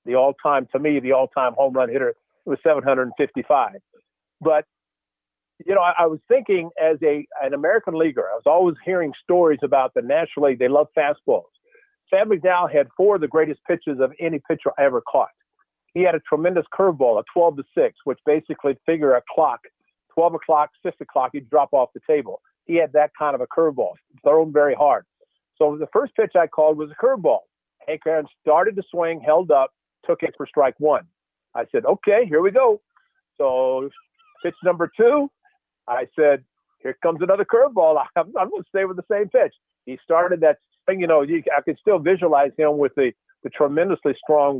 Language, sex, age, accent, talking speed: English, male, 50-69, American, 195 wpm